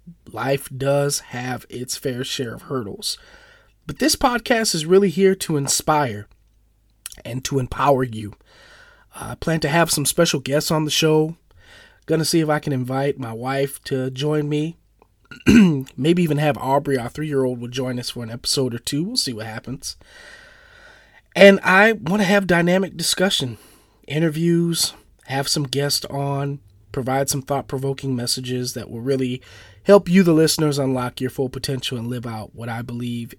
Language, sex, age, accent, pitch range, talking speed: English, male, 30-49, American, 115-155 Hz, 165 wpm